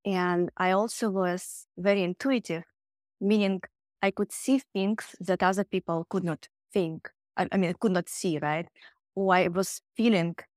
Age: 20-39